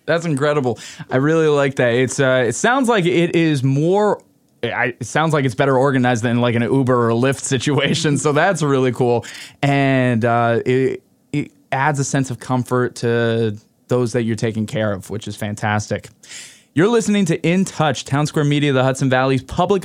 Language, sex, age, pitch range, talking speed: English, male, 20-39, 125-155 Hz, 185 wpm